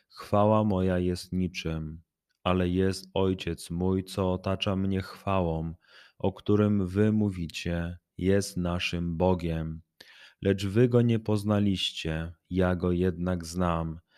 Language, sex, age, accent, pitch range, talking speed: Polish, male, 30-49, native, 85-100 Hz, 120 wpm